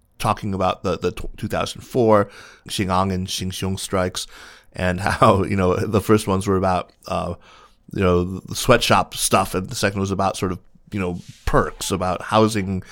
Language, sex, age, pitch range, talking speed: English, male, 30-49, 95-115 Hz, 165 wpm